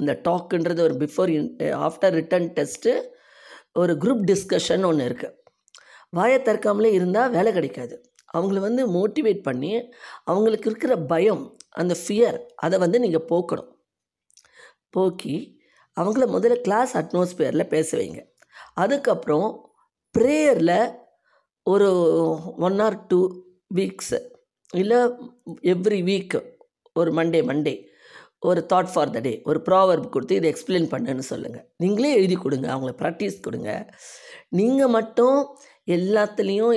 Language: Tamil